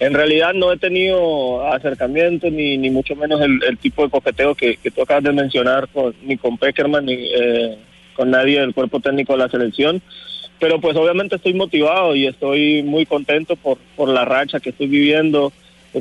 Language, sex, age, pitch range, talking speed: Spanish, male, 30-49, 135-165 Hz, 195 wpm